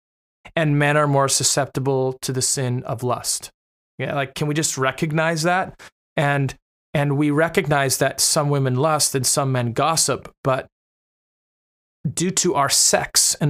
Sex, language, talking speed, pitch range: male, English, 155 wpm, 120-145 Hz